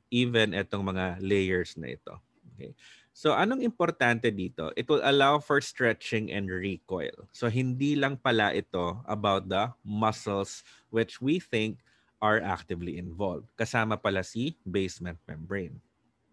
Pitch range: 100-130 Hz